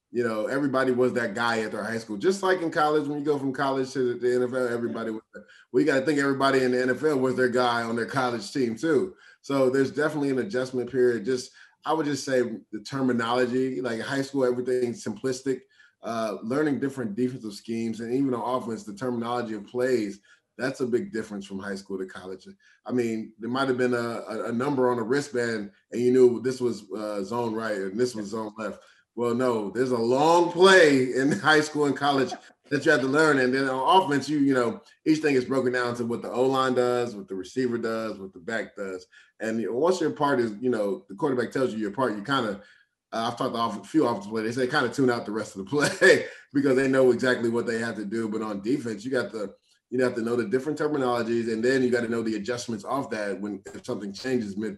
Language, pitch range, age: English, 115-130 Hz, 20-39